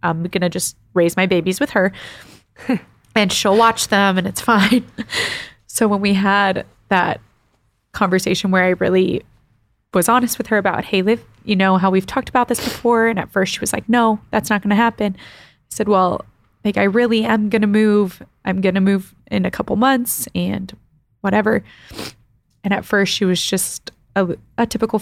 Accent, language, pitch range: American, English, 185-220 Hz